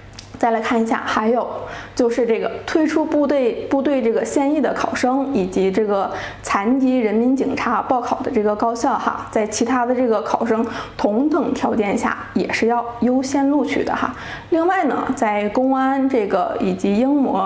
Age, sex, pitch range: 20-39, female, 215-275 Hz